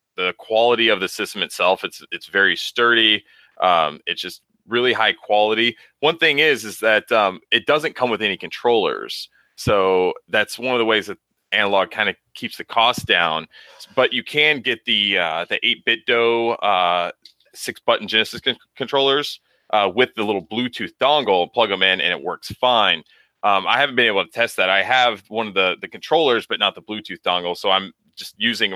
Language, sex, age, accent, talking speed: English, male, 30-49, American, 190 wpm